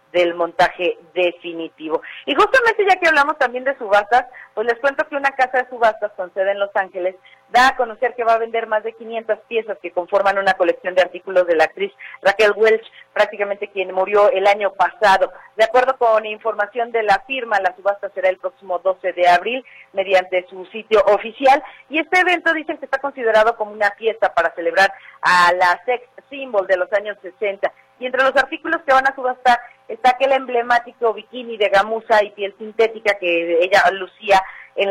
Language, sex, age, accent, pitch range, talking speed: Spanish, female, 40-59, Mexican, 185-235 Hz, 195 wpm